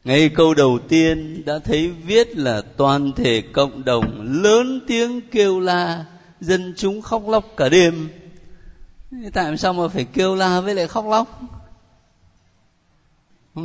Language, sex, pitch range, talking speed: Vietnamese, male, 140-195 Hz, 145 wpm